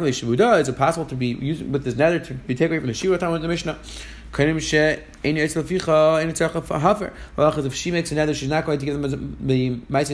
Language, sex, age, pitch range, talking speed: English, male, 30-49, 140-175 Hz, 190 wpm